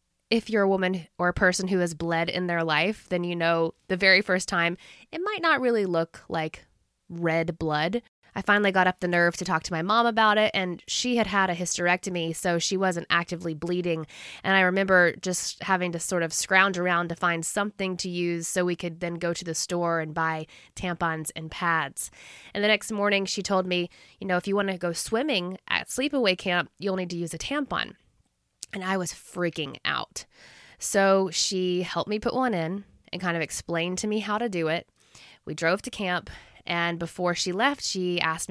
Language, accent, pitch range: English, American, 165-190 Hz